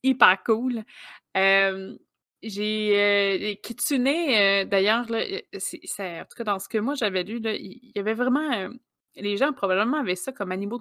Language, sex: French, female